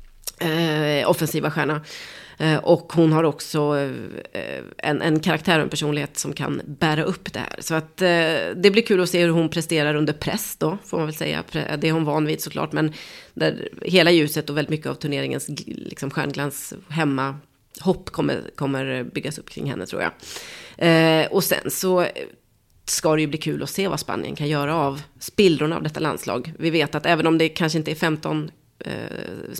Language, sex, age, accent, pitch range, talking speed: Swedish, female, 30-49, native, 150-170 Hz, 200 wpm